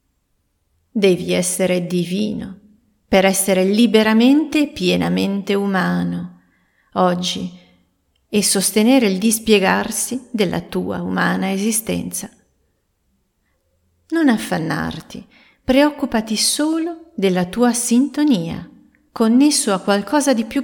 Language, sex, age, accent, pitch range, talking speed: Italian, female, 40-59, native, 170-220 Hz, 85 wpm